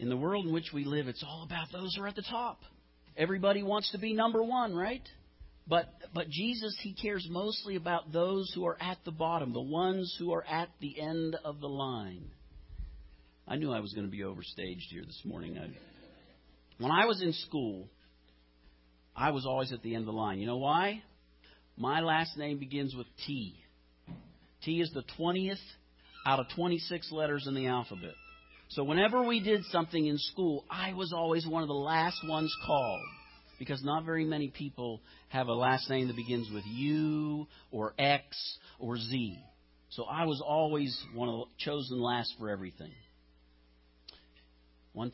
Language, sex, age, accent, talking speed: English, male, 50-69, American, 180 wpm